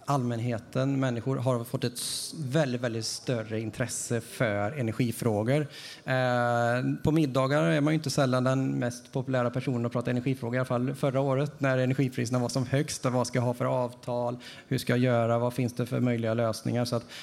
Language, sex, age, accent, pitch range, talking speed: Swedish, male, 30-49, Norwegian, 115-140 Hz, 190 wpm